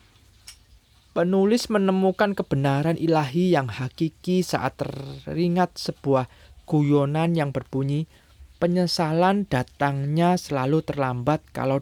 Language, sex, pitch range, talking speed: Indonesian, male, 110-155 Hz, 85 wpm